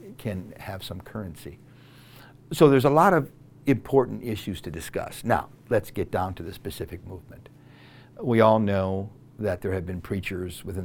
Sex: male